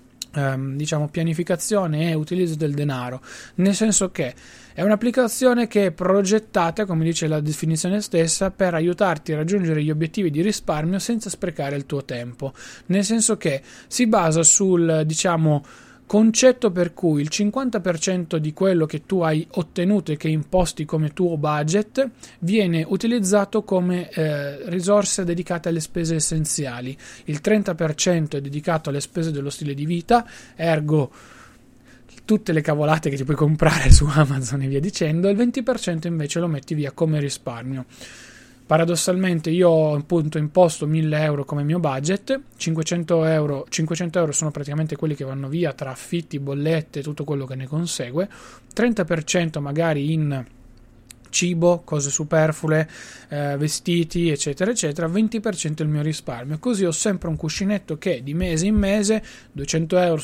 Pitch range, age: 150-185 Hz, 20-39